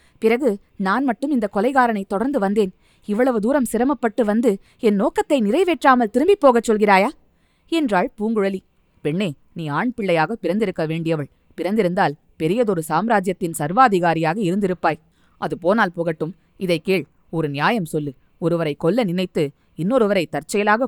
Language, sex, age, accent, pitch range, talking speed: Tamil, female, 20-39, native, 170-240 Hz, 120 wpm